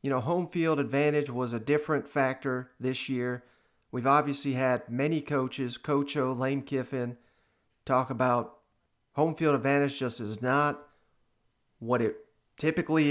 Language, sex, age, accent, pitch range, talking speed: English, male, 40-59, American, 125-150 Hz, 140 wpm